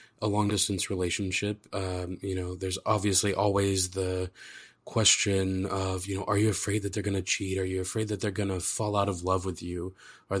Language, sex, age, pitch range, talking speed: English, male, 20-39, 95-105 Hz, 215 wpm